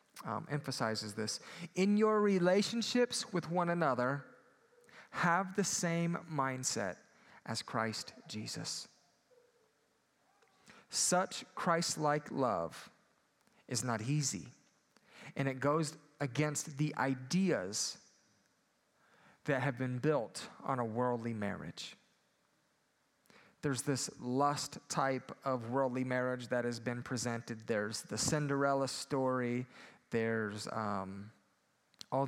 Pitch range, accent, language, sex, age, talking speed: 115-150 Hz, American, English, male, 30-49, 100 wpm